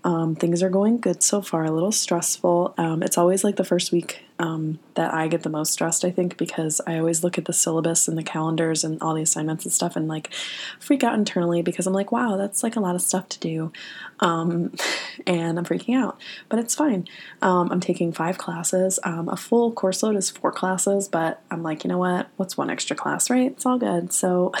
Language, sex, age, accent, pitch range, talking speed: English, female, 20-39, American, 165-195 Hz, 230 wpm